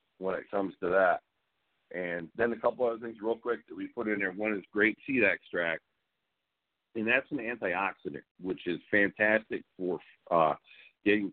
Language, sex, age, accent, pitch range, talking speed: English, male, 50-69, American, 85-105 Hz, 175 wpm